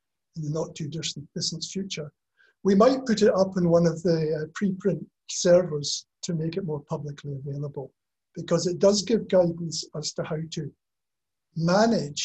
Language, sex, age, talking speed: English, male, 60-79, 165 wpm